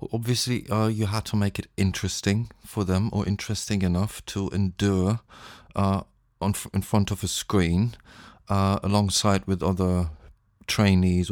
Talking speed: 145 wpm